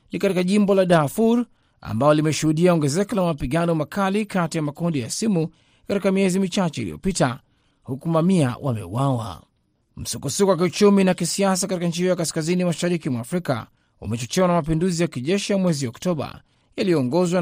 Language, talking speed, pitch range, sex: Swahili, 155 wpm, 130-180 Hz, male